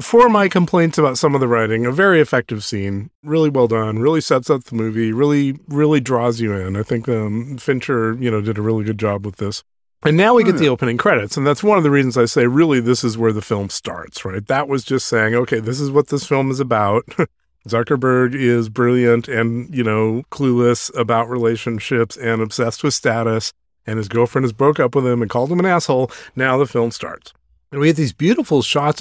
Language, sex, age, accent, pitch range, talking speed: English, male, 40-59, American, 115-145 Hz, 225 wpm